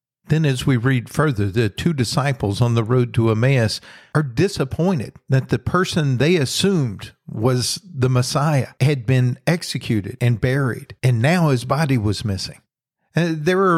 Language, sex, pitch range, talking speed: English, male, 120-150 Hz, 155 wpm